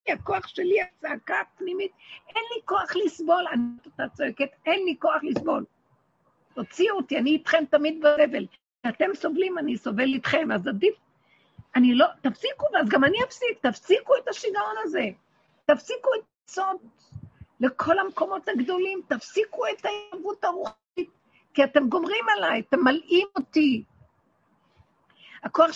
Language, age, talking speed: Hebrew, 50-69, 135 wpm